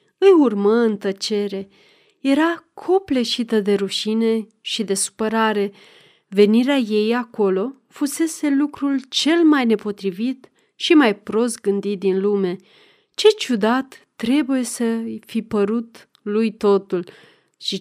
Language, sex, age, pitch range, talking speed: Romanian, female, 30-49, 205-265 Hz, 115 wpm